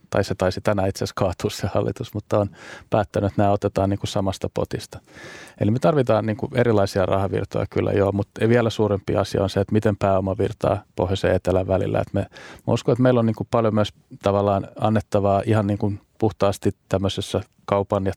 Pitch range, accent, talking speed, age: 95-105 Hz, native, 205 wpm, 30-49